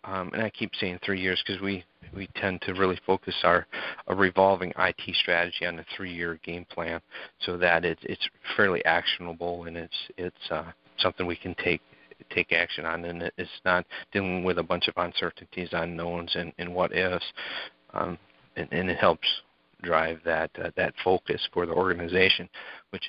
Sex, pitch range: male, 85-95 Hz